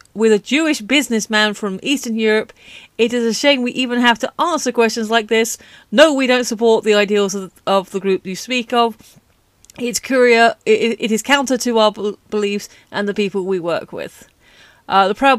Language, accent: English, British